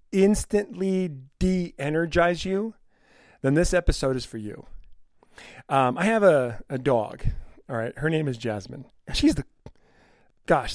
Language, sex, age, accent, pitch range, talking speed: English, male, 40-59, American, 130-165 Hz, 135 wpm